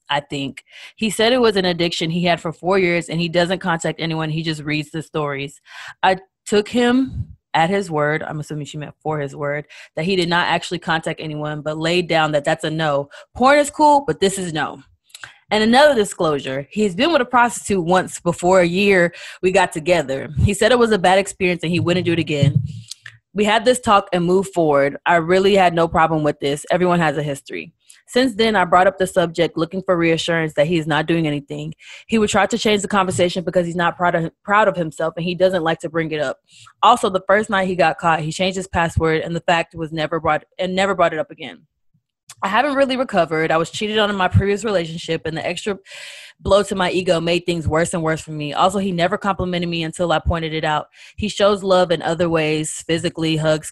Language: English